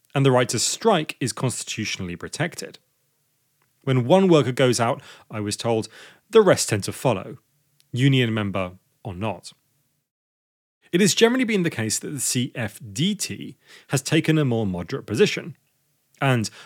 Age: 30-49